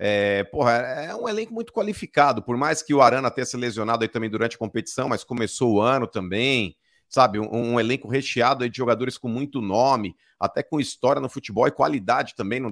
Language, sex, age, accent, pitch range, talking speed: Portuguese, male, 50-69, Brazilian, 120-180 Hz, 210 wpm